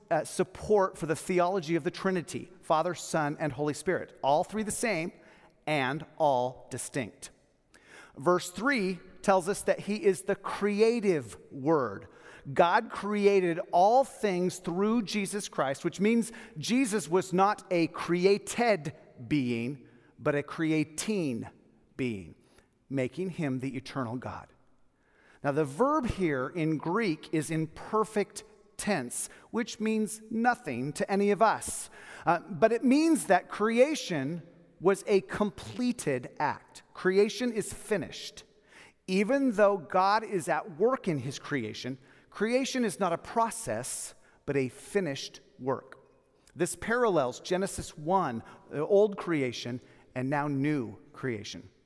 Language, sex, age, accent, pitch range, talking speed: English, male, 40-59, American, 150-210 Hz, 130 wpm